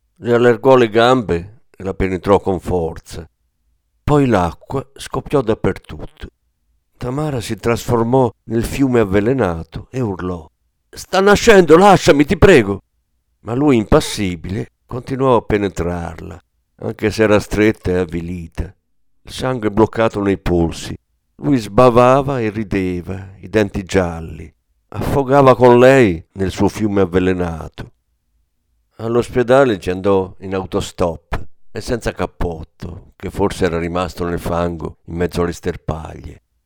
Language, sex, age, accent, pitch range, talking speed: Italian, male, 50-69, native, 85-115 Hz, 125 wpm